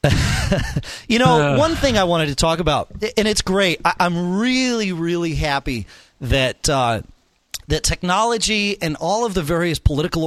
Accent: American